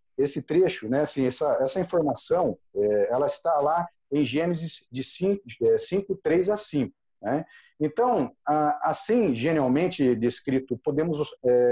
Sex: male